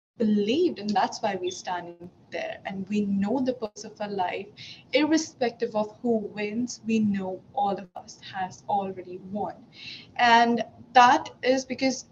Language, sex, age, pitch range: English, female, 20-39, 200-245 Hz